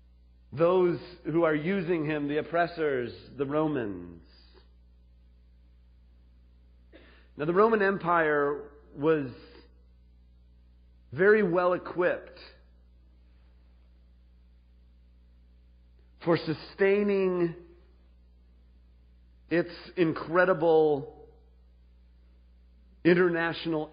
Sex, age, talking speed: male, 40-59, 55 wpm